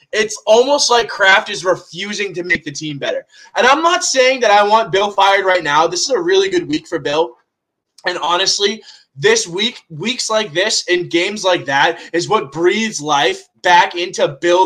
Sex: male